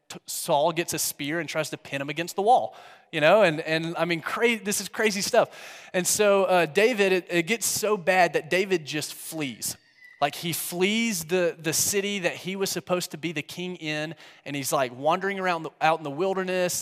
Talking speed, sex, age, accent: 220 wpm, male, 30-49, American